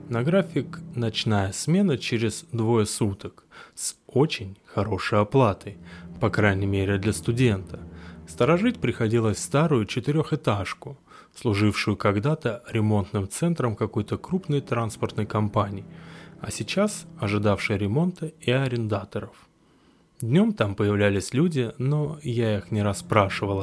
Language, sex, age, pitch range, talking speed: Russian, male, 20-39, 100-140 Hz, 110 wpm